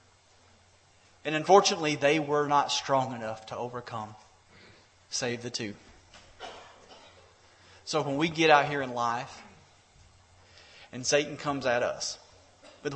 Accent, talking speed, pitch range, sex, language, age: American, 120 wpm, 95-165 Hz, male, English, 30-49